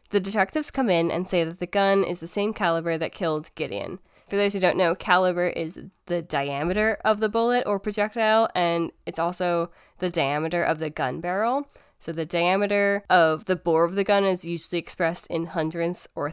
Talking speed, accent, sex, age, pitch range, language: 200 wpm, American, female, 10-29, 165-200 Hz, English